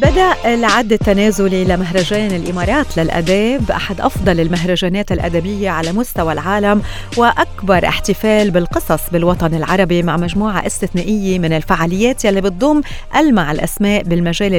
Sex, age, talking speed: female, 30-49, 115 wpm